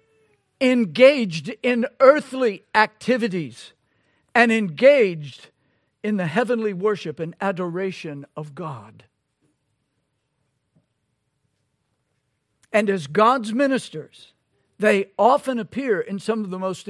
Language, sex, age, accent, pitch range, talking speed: English, male, 60-79, American, 155-225 Hz, 90 wpm